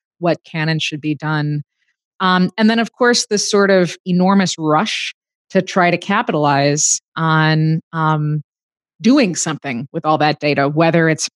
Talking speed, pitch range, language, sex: 160 wpm, 165-205 Hz, English, female